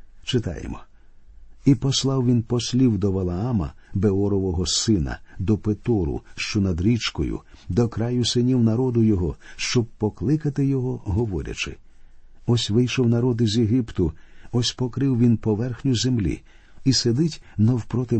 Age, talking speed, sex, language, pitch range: 50-69, 120 wpm, male, Ukrainian, 100-130 Hz